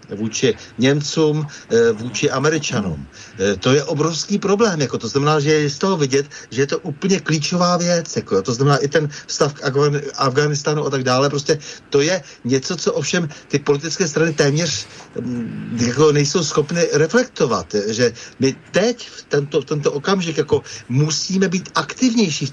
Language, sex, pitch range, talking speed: Slovak, male, 115-155 Hz, 155 wpm